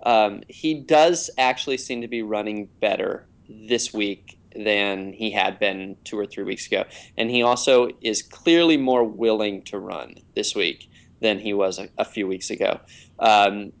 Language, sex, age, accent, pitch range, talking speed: English, male, 20-39, American, 105-130 Hz, 175 wpm